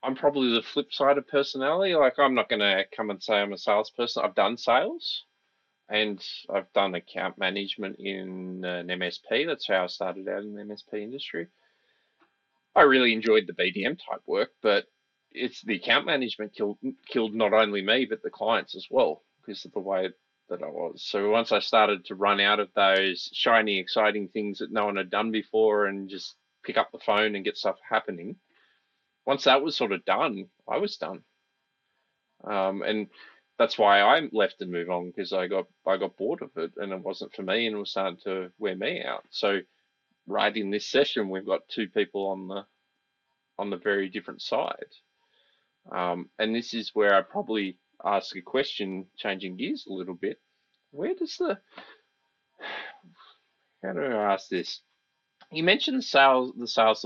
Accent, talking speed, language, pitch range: Australian, 185 wpm, English, 100-135 Hz